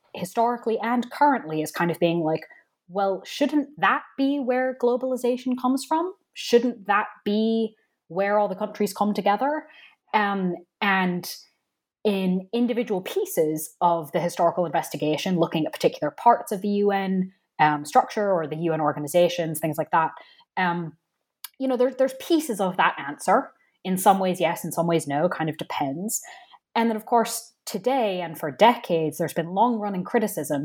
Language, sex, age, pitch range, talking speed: English, female, 10-29, 170-240 Hz, 165 wpm